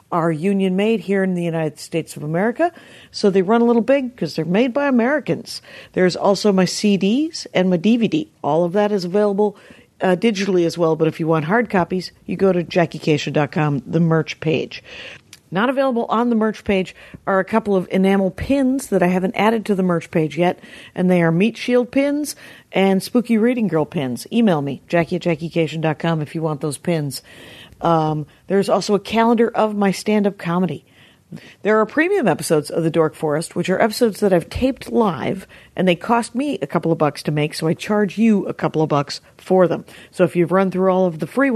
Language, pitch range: English, 165-225 Hz